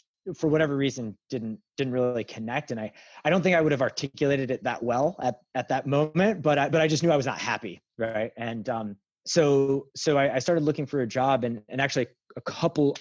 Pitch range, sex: 115-150 Hz, male